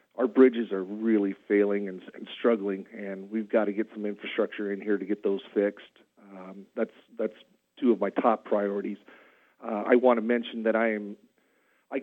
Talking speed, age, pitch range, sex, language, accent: 190 wpm, 40-59, 100-115 Hz, male, English, American